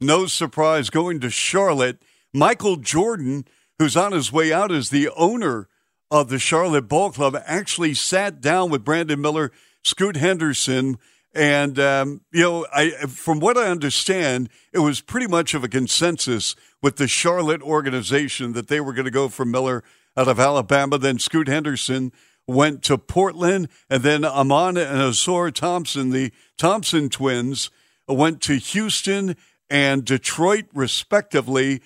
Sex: male